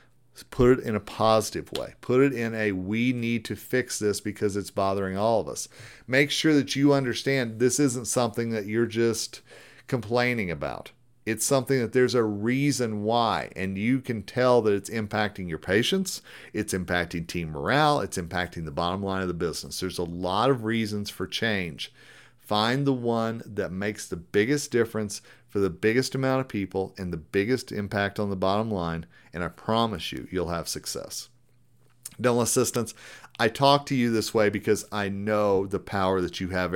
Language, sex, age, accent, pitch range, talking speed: English, male, 40-59, American, 100-125 Hz, 185 wpm